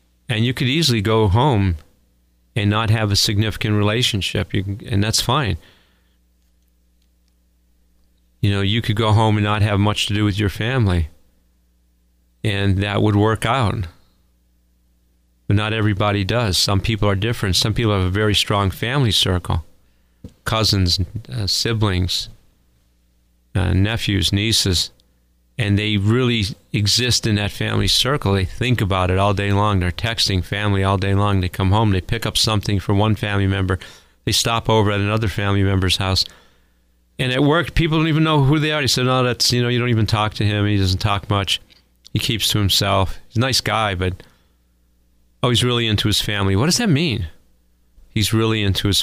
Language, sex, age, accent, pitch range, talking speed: English, male, 40-59, American, 85-110 Hz, 180 wpm